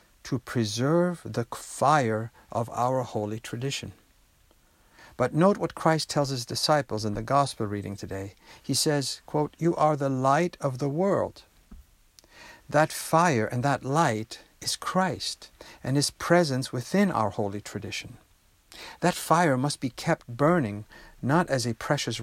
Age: 60-79